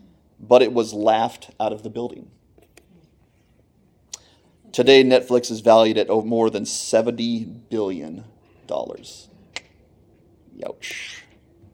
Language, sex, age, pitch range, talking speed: English, male, 30-49, 110-130 Hz, 95 wpm